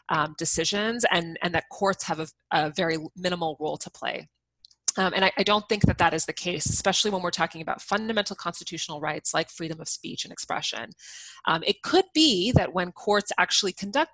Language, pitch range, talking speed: English, 165-200 Hz, 205 wpm